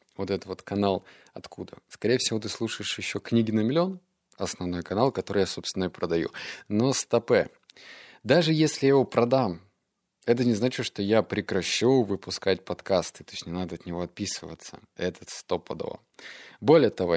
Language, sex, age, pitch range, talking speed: Russian, male, 20-39, 90-125 Hz, 165 wpm